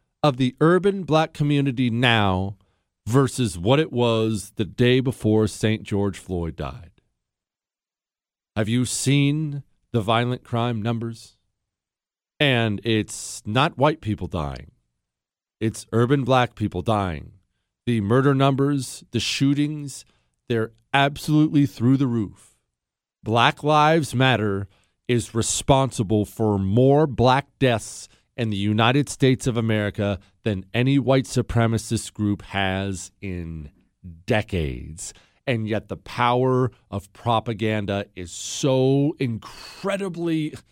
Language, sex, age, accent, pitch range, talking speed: English, male, 40-59, American, 105-140 Hz, 115 wpm